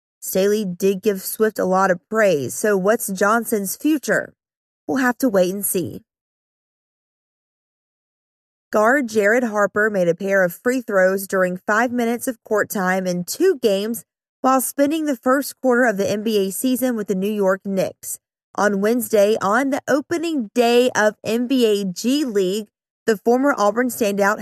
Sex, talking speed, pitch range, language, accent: female, 155 wpm, 195-240 Hz, English, American